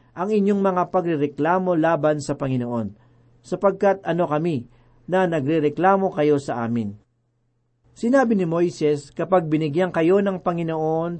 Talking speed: 125 wpm